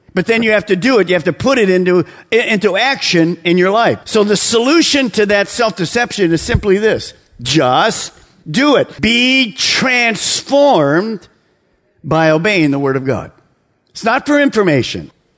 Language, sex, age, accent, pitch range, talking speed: English, male, 50-69, American, 150-220 Hz, 165 wpm